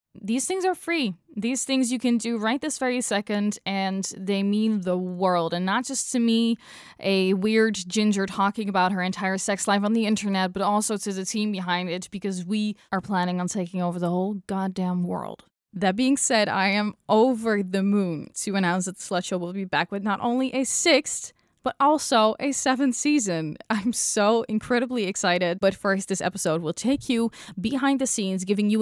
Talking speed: 200 wpm